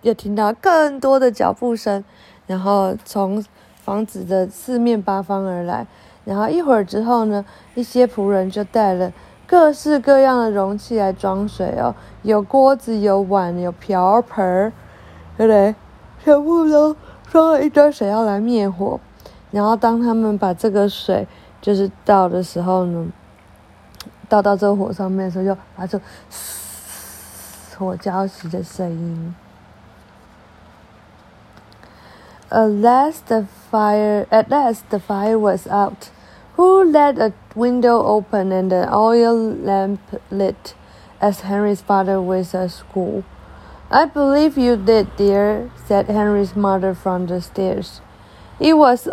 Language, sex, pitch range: Chinese, female, 190-235 Hz